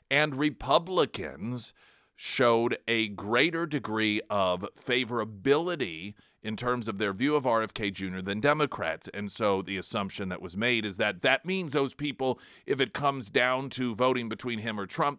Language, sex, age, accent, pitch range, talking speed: English, male, 40-59, American, 100-145 Hz, 160 wpm